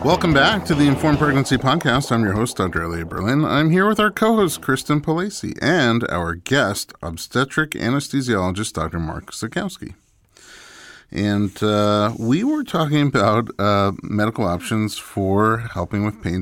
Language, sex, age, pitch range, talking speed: English, male, 30-49, 90-120 Hz, 150 wpm